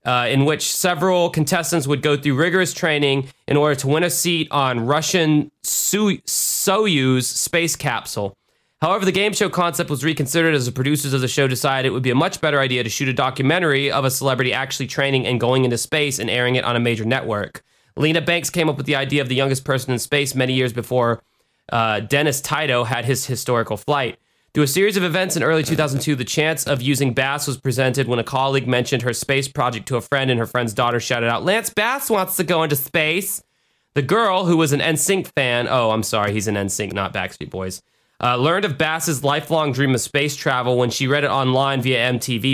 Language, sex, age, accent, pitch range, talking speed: English, male, 20-39, American, 125-155 Hz, 220 wpm